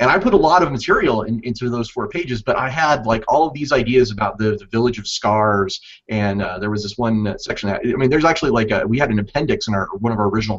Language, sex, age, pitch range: English, male, 30-49, 105-135 Hz